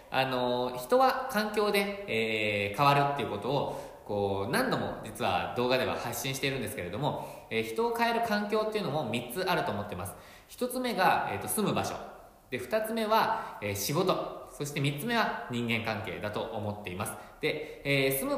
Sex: male